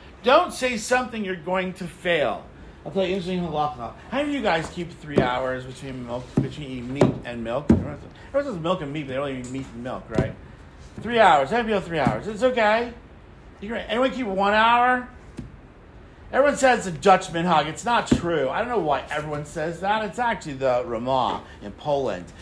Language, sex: English, male